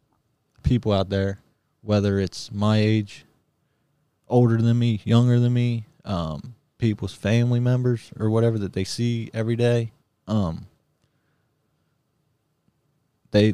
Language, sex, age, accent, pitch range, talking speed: English, male, 20-39, American, 100-115 Hz, 115 wpm